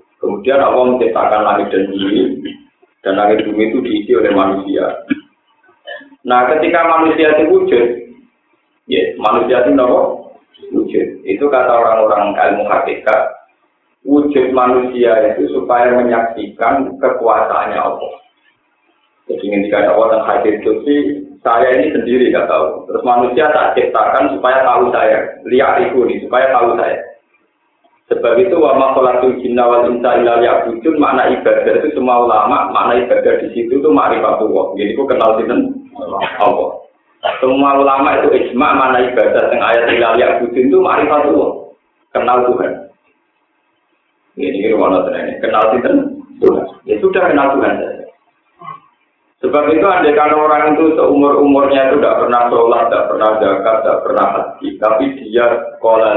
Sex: male